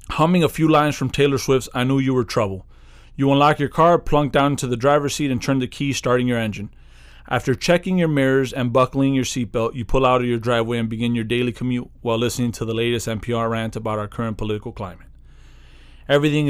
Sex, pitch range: male, 110-135 Hz